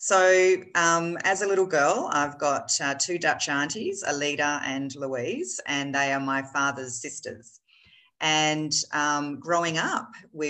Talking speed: 150 wpm